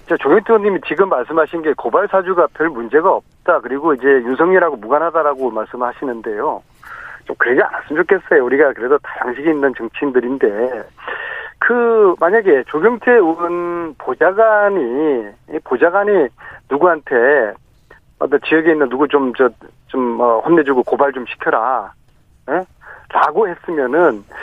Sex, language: male, Korean